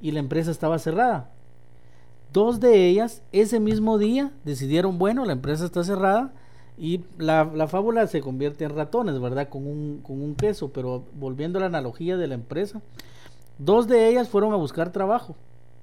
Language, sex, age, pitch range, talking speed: Spanish, male, 50-69, 135-200 Hz, 175 wpm